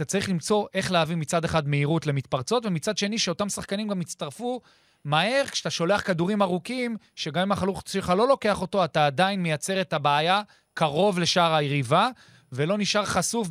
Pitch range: 150-195 Hz